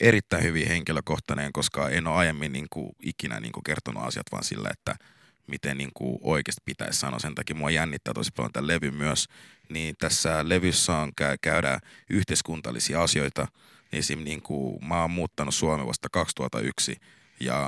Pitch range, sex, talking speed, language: 70-85 Hz, male, 155 wpm, Finnish